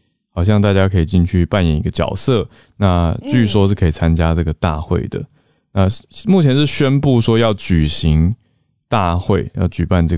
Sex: male